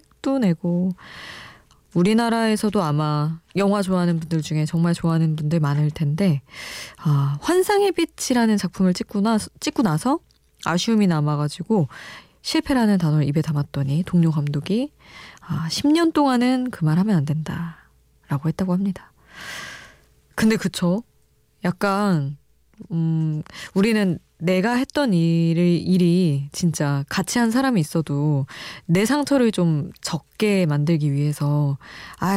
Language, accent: Korean, native